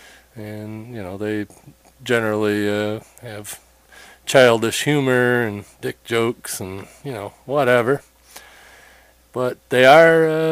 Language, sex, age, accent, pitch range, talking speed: English, male, 40-59, American, 110-135 Hz, 115 wpm